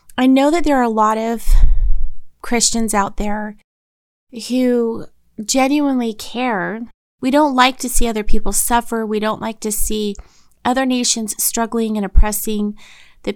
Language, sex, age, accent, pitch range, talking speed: English, female, 30-49, American, 210-250 Hz, 150 wpm